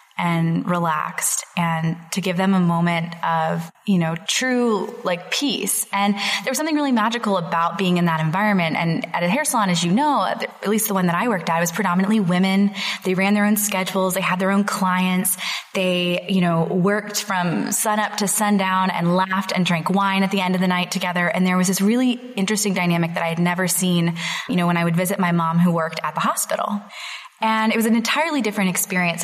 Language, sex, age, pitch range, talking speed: English, female, 20-39, 170-205 Hz, 220 wpm